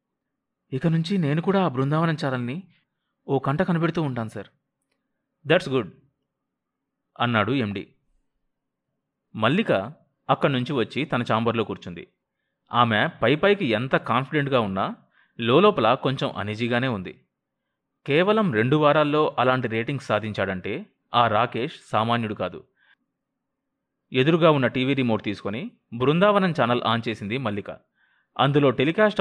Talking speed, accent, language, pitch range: 115 wpm, native, Telugu, 120-180 Hz